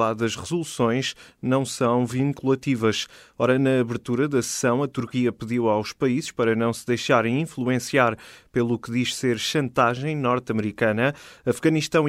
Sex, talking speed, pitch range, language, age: male, 135 wpm, 110-130 Hz, Portuguese, 30-49